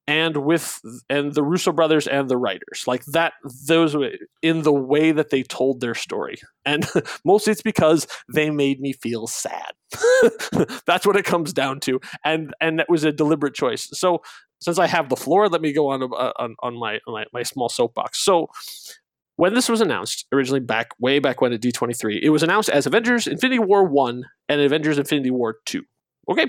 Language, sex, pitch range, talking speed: English, male, 130-170 Hz, 195 wpm